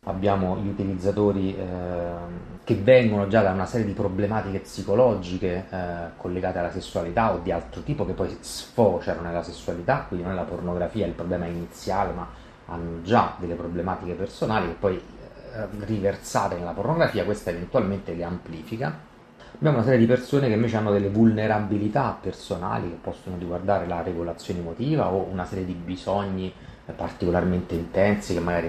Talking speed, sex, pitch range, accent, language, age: 160 wpm, male, 85-100 Hz, native, Italian, 30-49